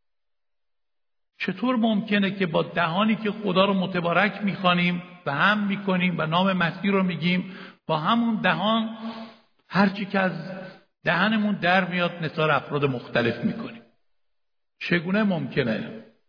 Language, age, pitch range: Persian, 60-79, 150-205 Hz